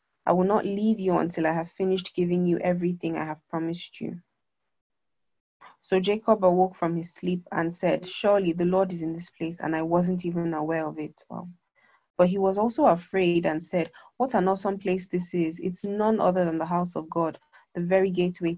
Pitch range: 170-190 Hz